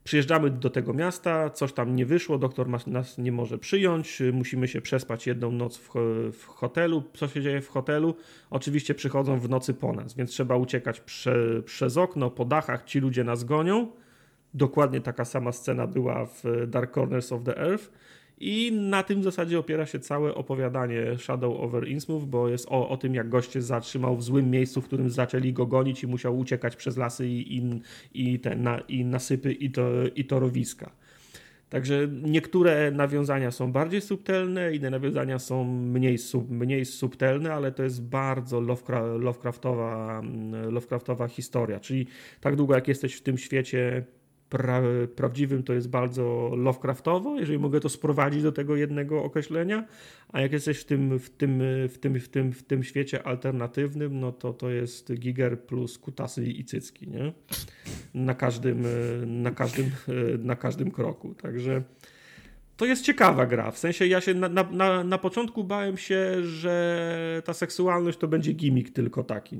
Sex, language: male, Polish